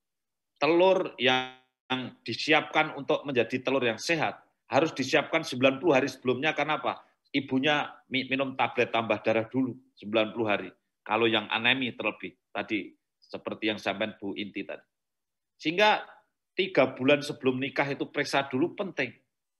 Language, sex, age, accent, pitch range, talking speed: Indonesian, male, 50-69, native, 120-155 Hz, 130 wpm